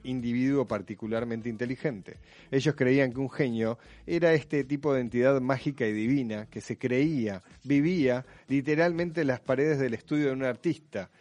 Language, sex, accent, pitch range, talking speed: Spanish, male, Argentinian, 120-150 Hz, 155 wpm